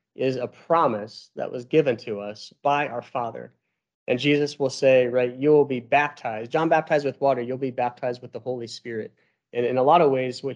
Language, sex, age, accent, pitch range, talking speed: English, male, 30-49, American, 110-135 Hz, 215 wpm